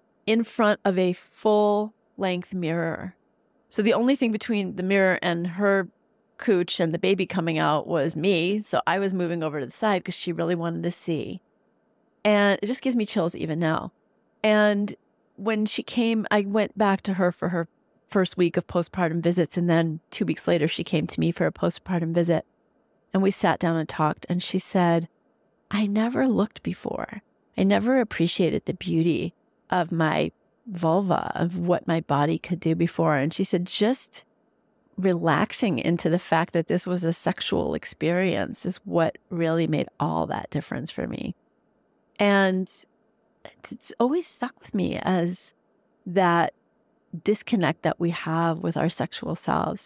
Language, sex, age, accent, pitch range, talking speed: English, female, 40-59, American, 170-215 Hz, 170 wpm